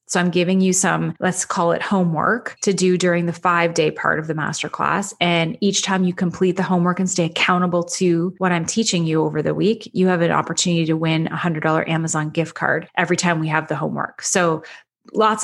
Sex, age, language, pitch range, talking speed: female, 30-49, English, 165-195 Hz, 220 wpm